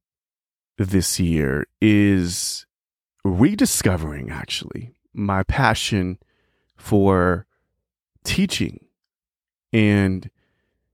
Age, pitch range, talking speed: 30-49, 90-125 Hz, 55 wpm